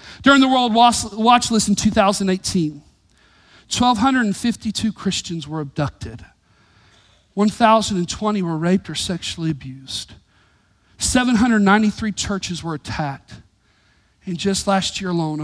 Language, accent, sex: English, American, male